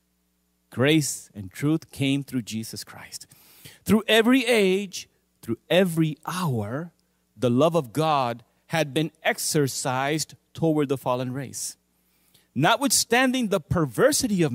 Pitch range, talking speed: 120-200 Hz, 115 wpm